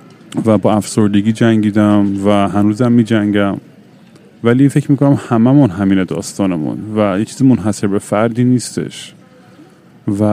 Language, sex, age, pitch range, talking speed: Persian, male, 30-49, 105-120 Hz, 130 wpm